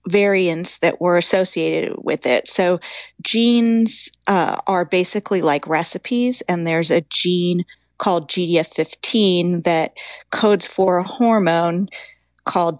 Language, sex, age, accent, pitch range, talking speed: English, female, 40-59, American, 175-215 Hz, 115 wpm